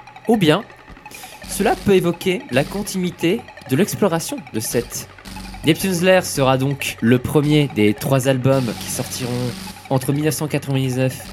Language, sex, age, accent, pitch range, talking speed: French, male, 20-39, French, 130-190 Hz, 125 wpm